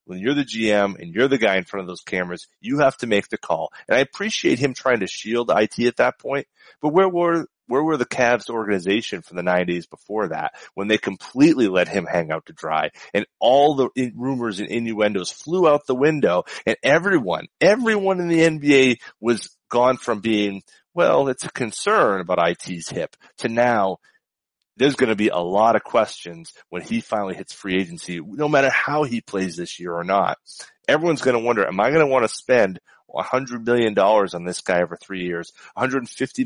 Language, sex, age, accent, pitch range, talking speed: English, male, 30-49, American, 95-140 Hz, 205 wpm